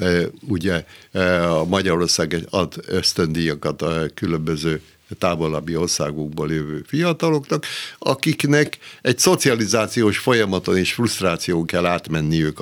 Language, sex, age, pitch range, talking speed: Hungarian, male, 60-79, 85-120 Hz, 90 wpm